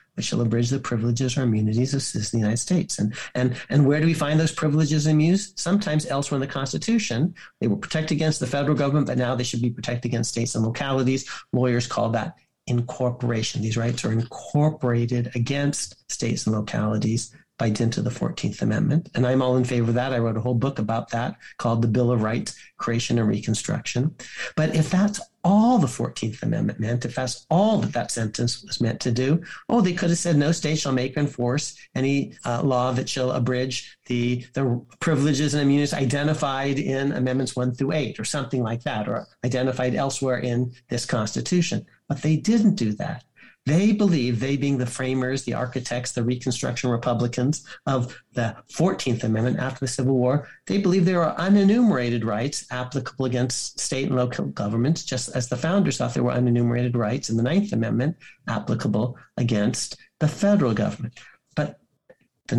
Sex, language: male, English